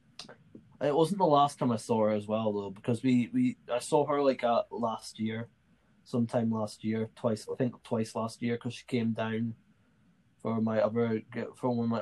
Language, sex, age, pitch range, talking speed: English, male, 20-39, 110-120 Hz, 205 wpm